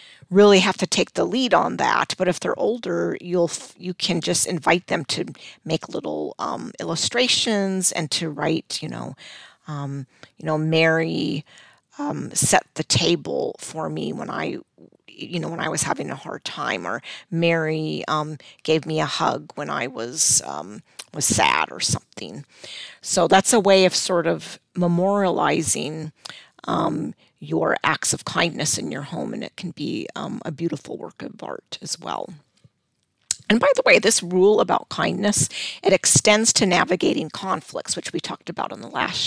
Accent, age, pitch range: American, 40-59, 165-205 Hz